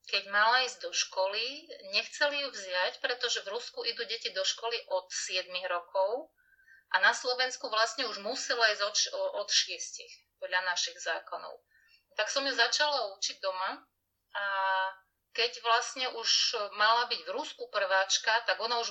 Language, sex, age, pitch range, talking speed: Slovak, female, 30-49, 195-250 Hz, 155 wpm